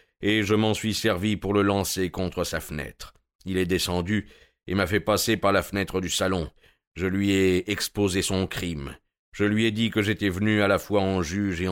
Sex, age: male, 50-69